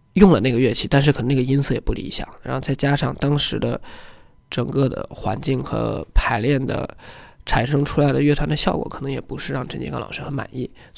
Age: 20-39